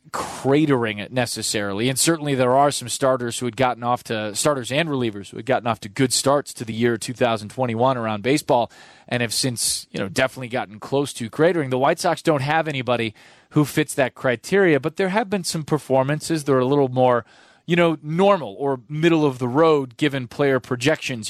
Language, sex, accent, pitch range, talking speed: English, male, American, 120-145 Hz, 205 wpm